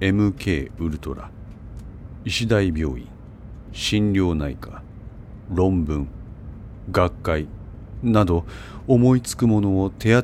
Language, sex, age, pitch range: Japanese, male, 40-59, 75-105 Hz